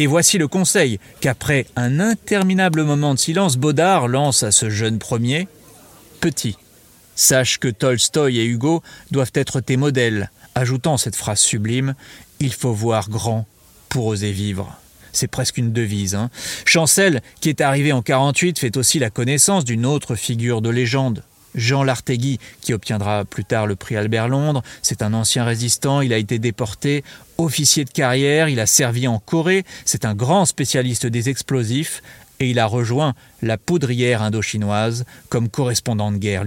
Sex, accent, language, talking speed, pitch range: male, French, French, 165 wpm, 115-145 Hz